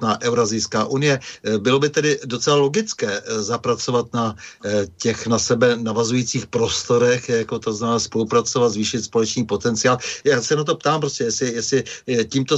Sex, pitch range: male, 115-140 Hz